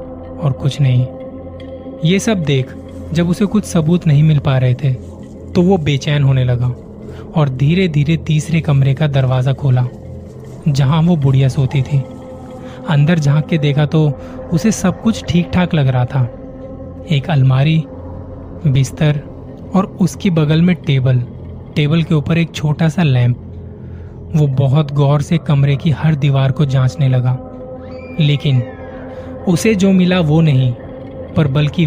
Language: Hindi